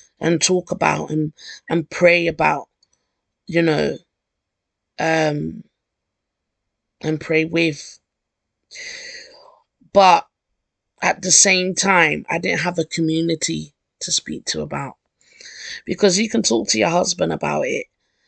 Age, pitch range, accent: 20-39, 140-200 Hz, British